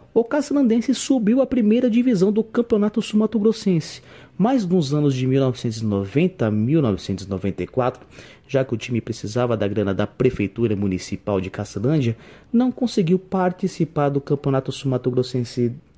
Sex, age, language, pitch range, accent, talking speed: male, 30-49, Portuguese, 110-180 Hz, Brazilian, 130 wpm